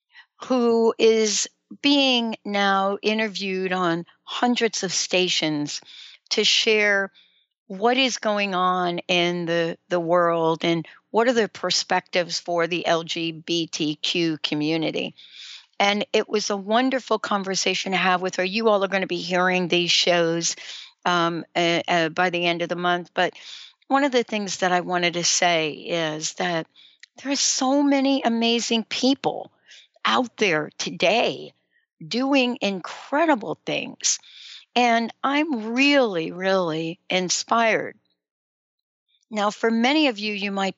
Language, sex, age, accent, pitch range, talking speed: English, female, 60-79, American, 175-235 Hz, 135 wpm